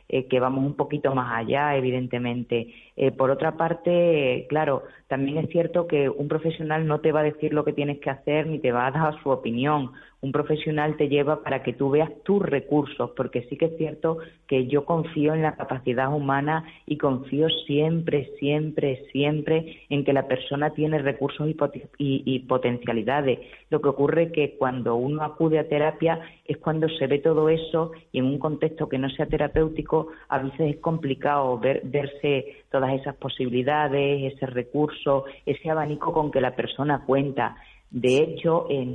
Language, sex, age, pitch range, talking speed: Spanish, female, 30-49, 130-150 Hz, 180 wpm